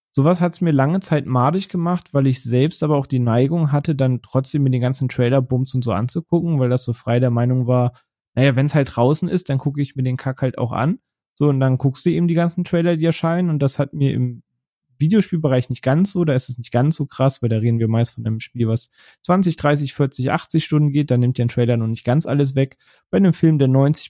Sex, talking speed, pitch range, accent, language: male, 260 wpm, 125-150 Hz, German, German